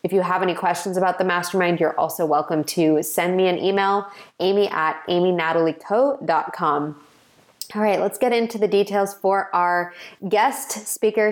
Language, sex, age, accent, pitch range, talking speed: English, female, 20-39, American, 170-210 Hz, 155 wpm